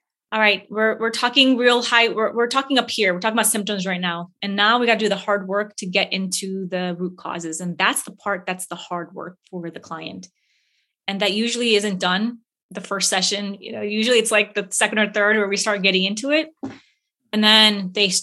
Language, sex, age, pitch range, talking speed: English, female, 20-39, 200-250 Hz, 230 wpm